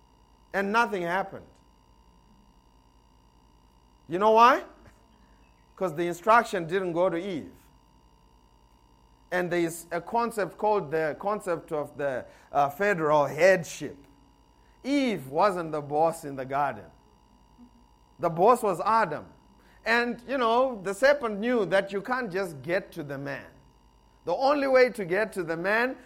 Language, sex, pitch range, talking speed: English, male, 150-235 Hz, 135 wpm